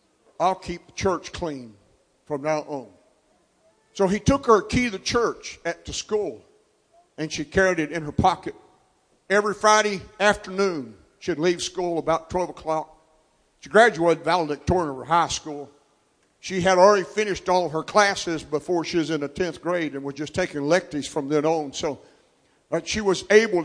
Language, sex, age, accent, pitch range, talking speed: English, male, 60-79, American, 155-195 Hz, 175 wpm